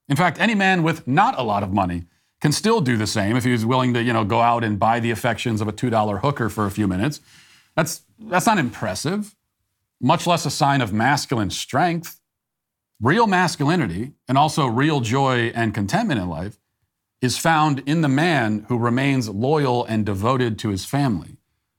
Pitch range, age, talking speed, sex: 105-145 Hz, 40-59, 190 wpm, male